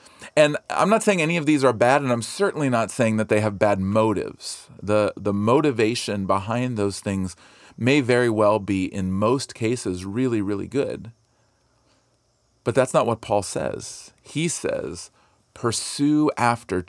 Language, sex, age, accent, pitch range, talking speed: English, male, 40-59, American, 95-120 Hz, 160 wpm